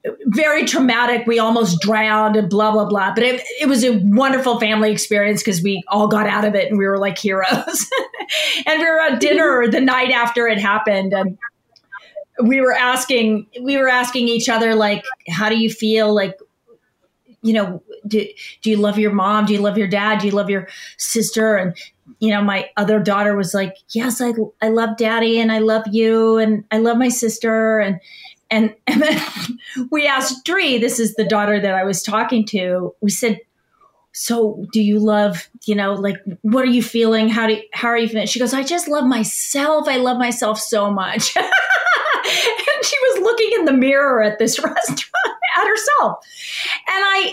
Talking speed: 195 wpm